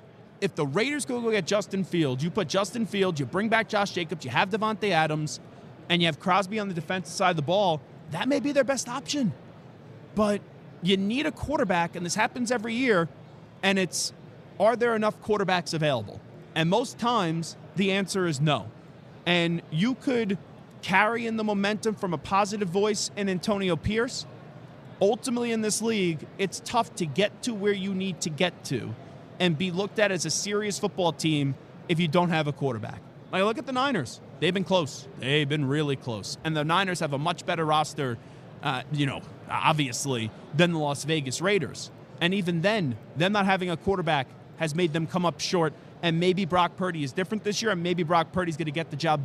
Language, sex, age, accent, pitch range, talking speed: English, male, 30-49, American, 150-200 Hz, 200 wpm